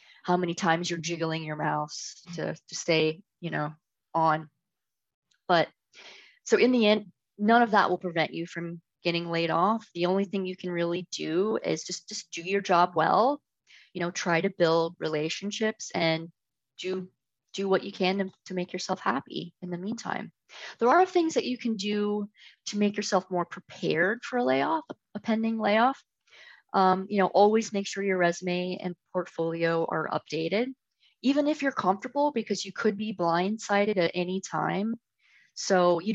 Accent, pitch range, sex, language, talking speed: American, 170-205 Hz, female, English, 175 wpm